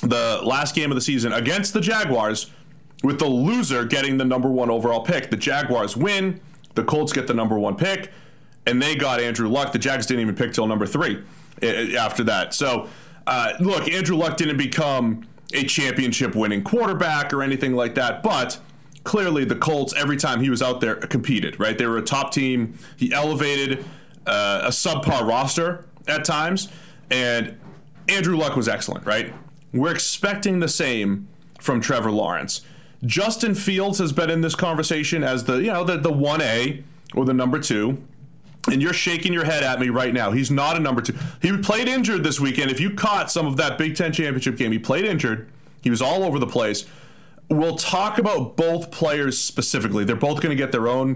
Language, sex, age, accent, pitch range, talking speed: English, male, 30-49, American, 125-165 Hz, 195 wpm